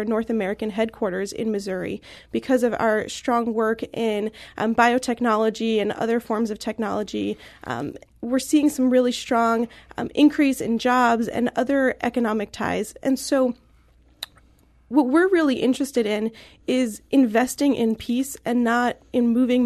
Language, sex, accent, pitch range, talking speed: English, female, American, 220-250 Hz, 145 wpm